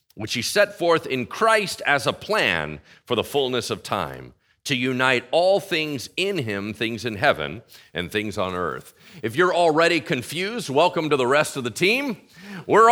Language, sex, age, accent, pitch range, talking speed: English, male, 40-59, American, 145-225 Hz, 180 wpm